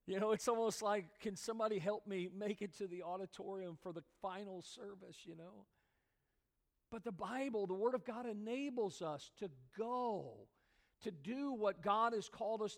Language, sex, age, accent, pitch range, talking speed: English, male, 50-69, American, 190-250 Hz, 180 wpm